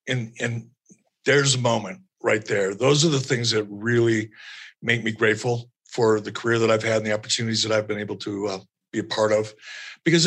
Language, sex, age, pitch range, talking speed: English, male, 50-69, 115-150 Hz, 210 wpm